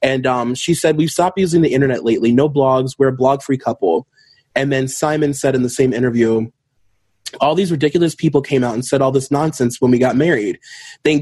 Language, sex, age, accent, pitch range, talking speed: English, male, 20-39, American, 120-145 Hz, 215 wpm